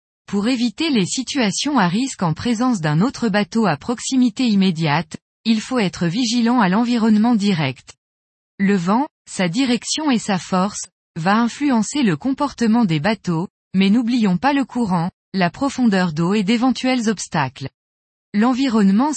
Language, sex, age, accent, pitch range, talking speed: French, female, 20-39, French, 180-245 Hz, 145 wpm